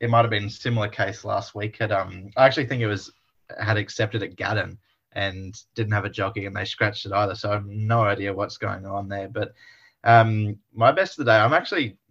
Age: 20-39